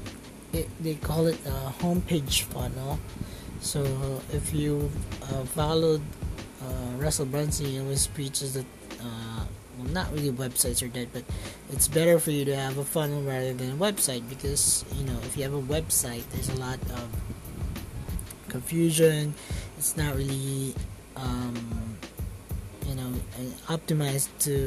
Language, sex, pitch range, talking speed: English, male, 125-145 Hz, 150 wpm